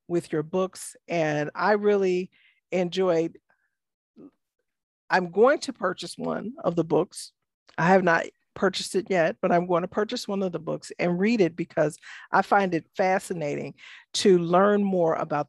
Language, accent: English, American